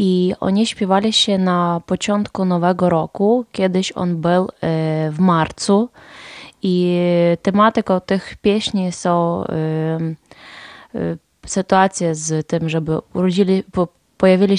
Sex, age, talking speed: female, 20-39, 100 wpm